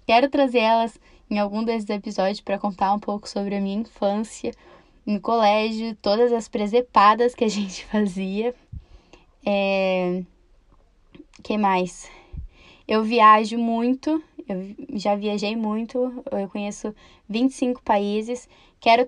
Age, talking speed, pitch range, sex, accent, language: 10-29, 125 wpm, 205-230 Hz, female, Brazilian, Portuguese